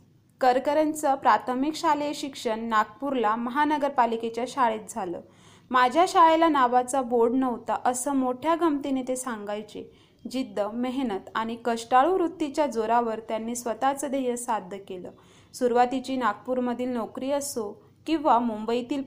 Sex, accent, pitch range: female, native, 230-275 Hz